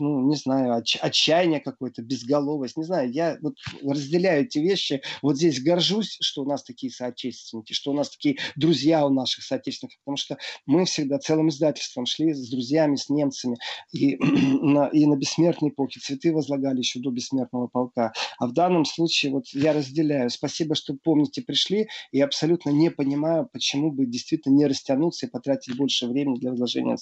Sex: male